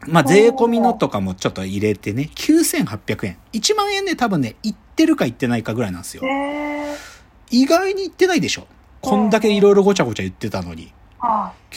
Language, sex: Japanese, male